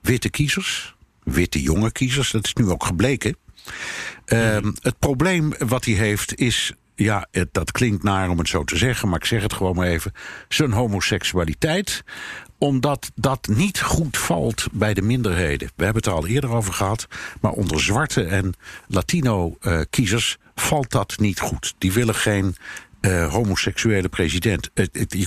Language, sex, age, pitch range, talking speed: Dutch, male, 60-79, 95-125 Hz, 165 wpm